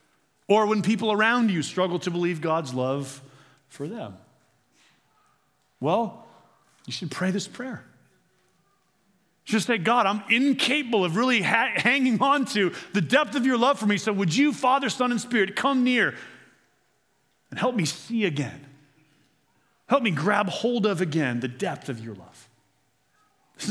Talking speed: 155 wpm